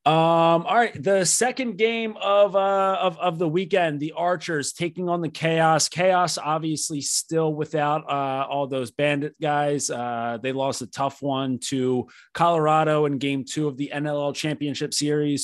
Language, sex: English, male